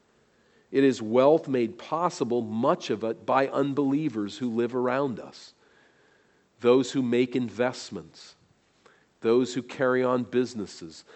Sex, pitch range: male, 115-130 Hz